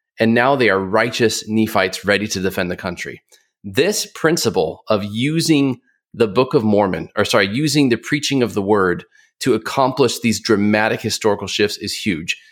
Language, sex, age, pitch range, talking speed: English, male, 30-49, 105-140 Hz, 170 wpm